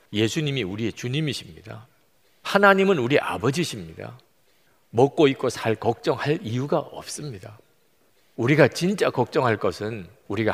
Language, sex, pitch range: Korean, male, 115-170 Hz